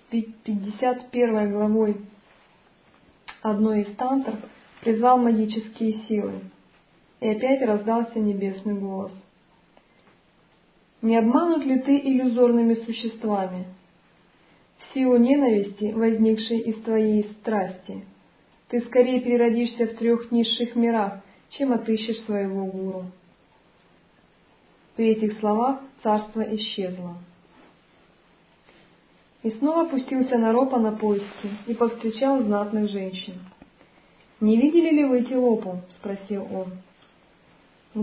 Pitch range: 205-245 Hz